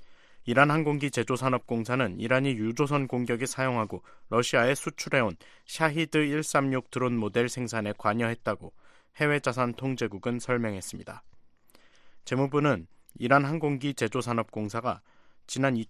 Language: Korean